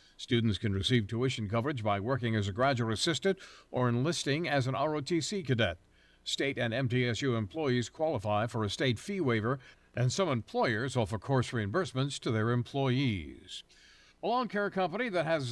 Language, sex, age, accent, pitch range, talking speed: English, male, 60-79, American, 115-150 Hz, 160 wpm